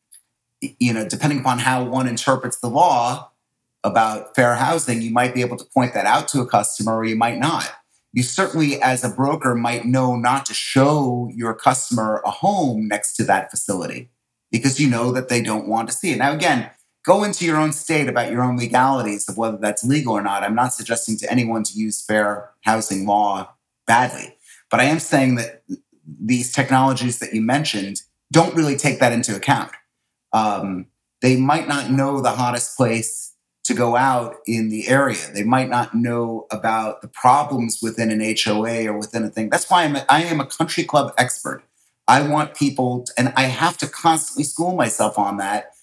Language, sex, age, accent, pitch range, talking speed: English, male, 30-49, American, 115-135 Hz, 195 wpm